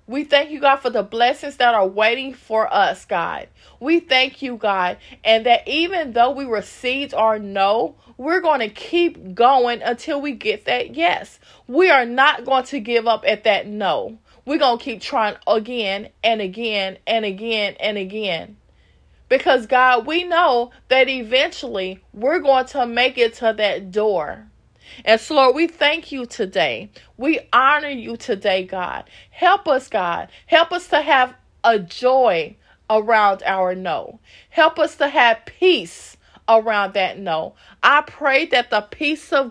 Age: 20-39